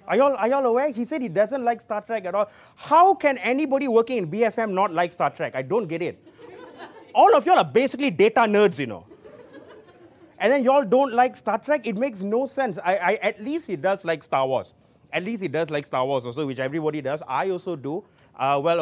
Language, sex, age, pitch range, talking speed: English, male, 30-49, 170-255 Hz, 235 wpm